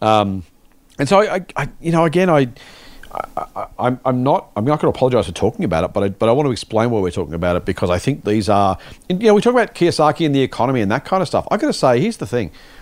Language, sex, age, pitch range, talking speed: English, male, 40-59, 105-150 Hz, 275 wpm